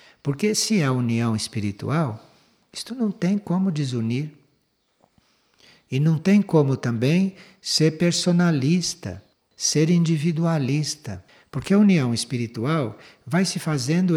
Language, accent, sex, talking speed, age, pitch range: Portuguese, Brazilian, male, 115 wpm, 60-79, 125-180 Hz